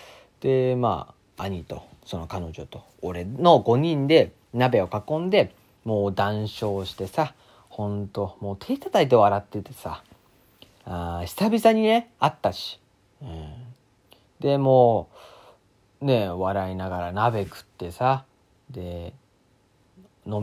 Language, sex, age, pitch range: Japanese, male, 40-59, 95-140 Hz